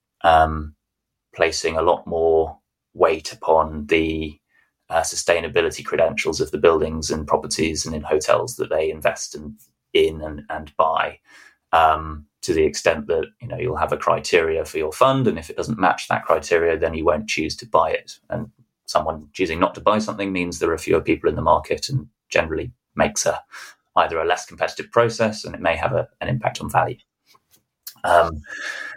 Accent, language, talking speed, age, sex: British, English, 185 wpm, 20-39, male